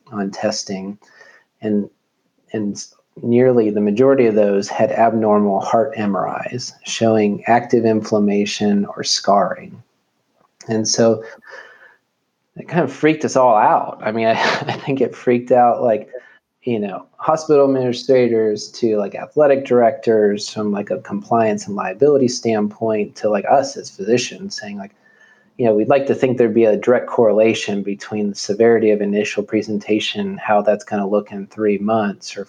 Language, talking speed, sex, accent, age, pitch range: English, 155 wpm, male, American, 30-49, 105-120 Hz